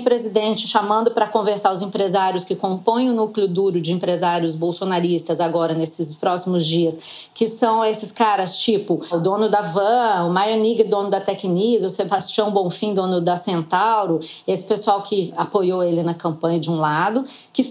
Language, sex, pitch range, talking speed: Portuguese, female, 190-270 Hz, 165 wpm